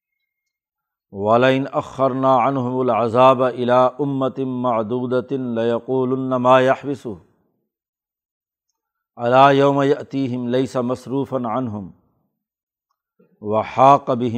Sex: male